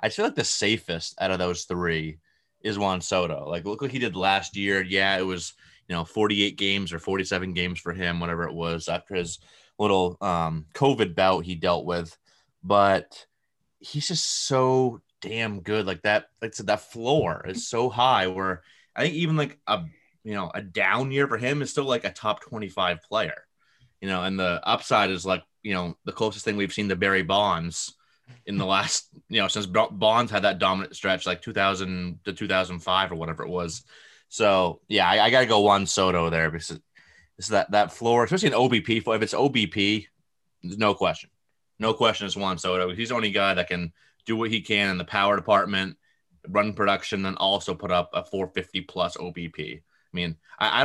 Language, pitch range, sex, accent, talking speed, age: English, 90-110 Hz, male, American, 210 wpm, 30-49